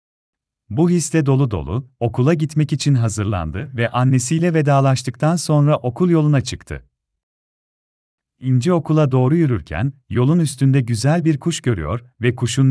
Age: 40-59